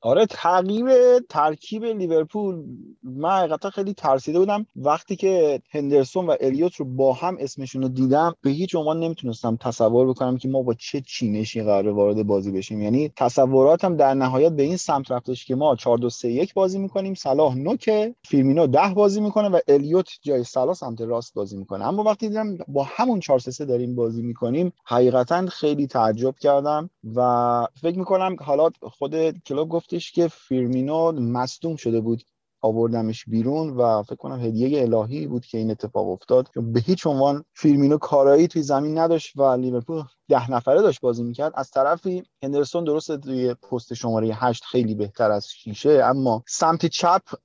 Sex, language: male, Persian